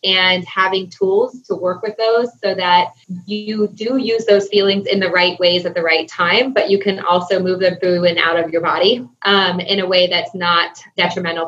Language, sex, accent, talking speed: English, female, American, 215 wpm